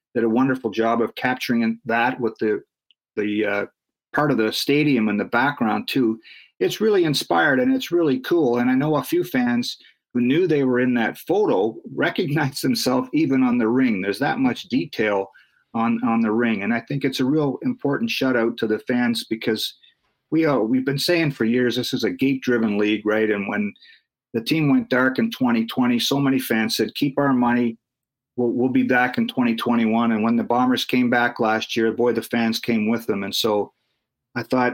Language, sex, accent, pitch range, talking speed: English, male, American, 110-140 Hz, 200 wpm